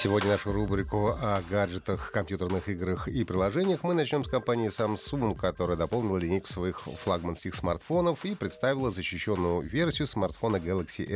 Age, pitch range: 30-49, 90-135 Hz